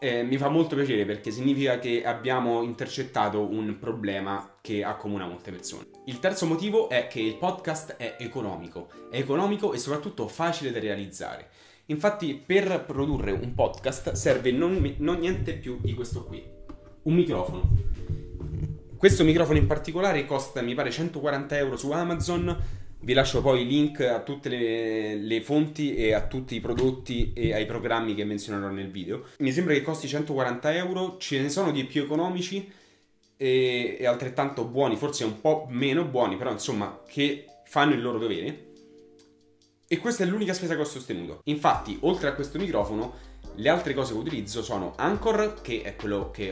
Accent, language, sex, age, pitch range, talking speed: native, Italian, male, 30-49, 105-150 Hz, 170 wpm